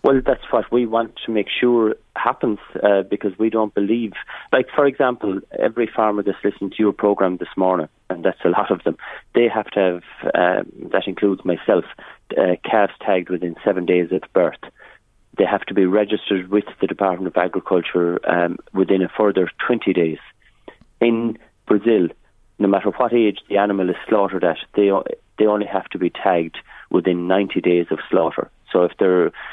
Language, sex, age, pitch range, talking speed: English, male, 30-49, 90-105 Hz, 185 wpm